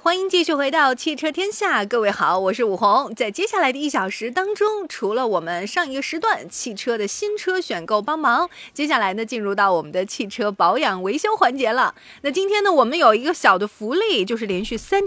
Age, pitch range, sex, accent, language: 30-49, 195-290 Hz, female, native, Chinese